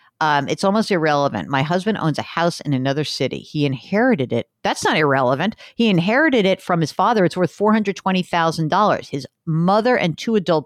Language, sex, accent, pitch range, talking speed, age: English, female, American, 150-220 Hz, 180 wpm, 50-69